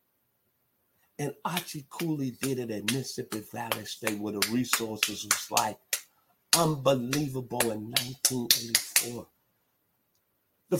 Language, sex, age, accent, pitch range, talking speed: English, male, 50-69, American, 105-130 Hz, 100 wpm